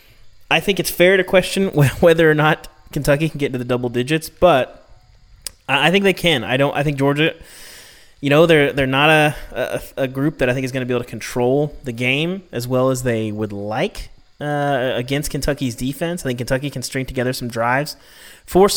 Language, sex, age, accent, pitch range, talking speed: English, male, 30-49, American, 125-160 Hz, 210 wpm